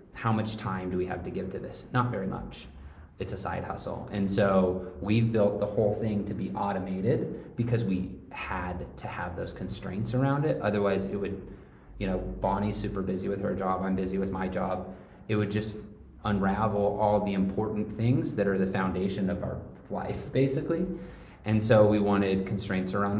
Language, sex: English, male